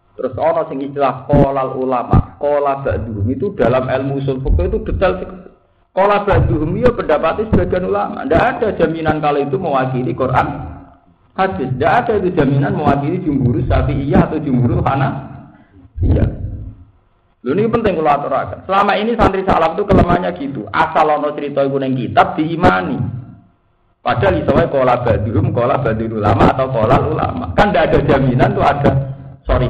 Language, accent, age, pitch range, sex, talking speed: Indonesian, native, 50-69, 100-140 Hz, male, 150 wpm